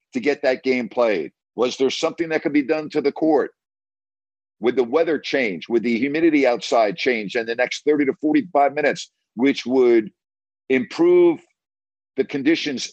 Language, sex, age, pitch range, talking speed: English, male, 50-69, 100-150 Hz, 160 wpm